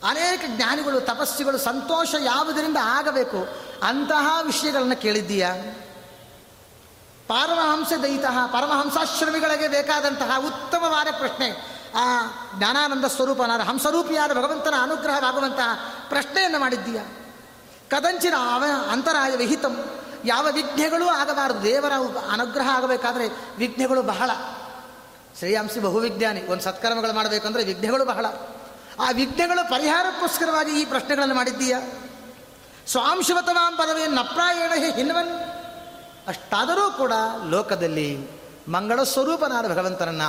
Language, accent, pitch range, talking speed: Kannada, native, 185-300 Hz, 90 wpm